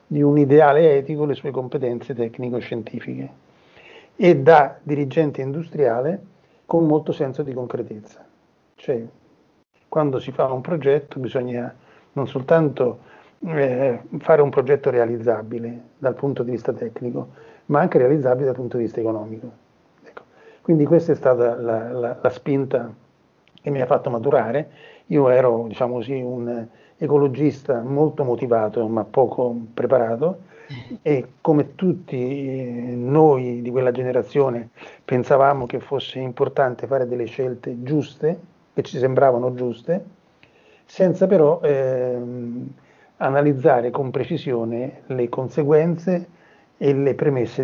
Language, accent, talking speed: Italian, native, 125 wpm